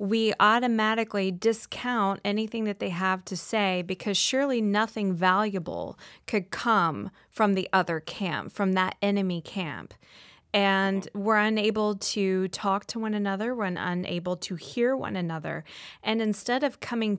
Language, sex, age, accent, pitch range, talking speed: English, female, 20-39, American, 185-230 Hz, 145 wpm